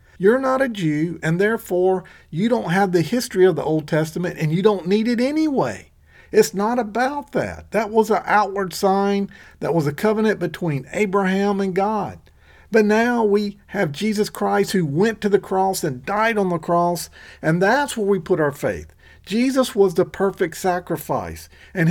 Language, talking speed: English, 185 wpm